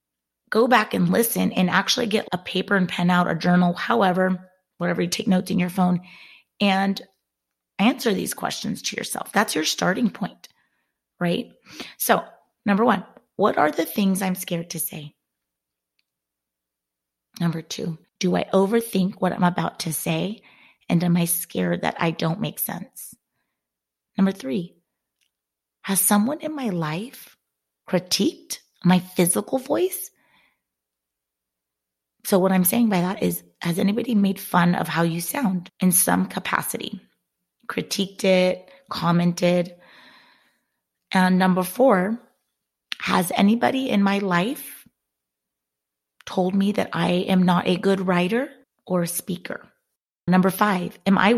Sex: female